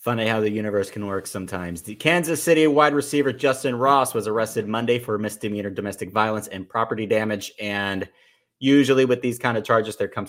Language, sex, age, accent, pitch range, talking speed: English, male, 30-49, American, 105-135 Hz, 190 wpm